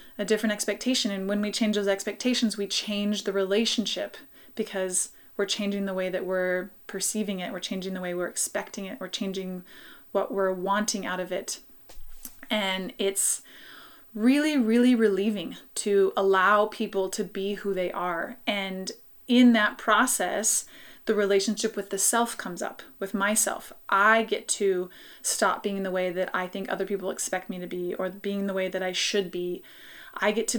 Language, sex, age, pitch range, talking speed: English, female, 20-39, 190-220 Hz, 175 wpm